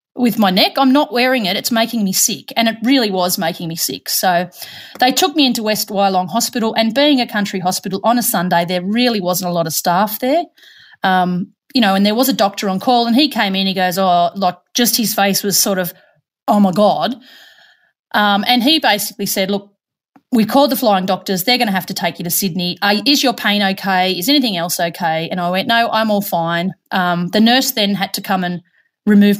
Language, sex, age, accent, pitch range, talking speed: English, female, 30-49, Australian, 190-245 Hz, 235 wpm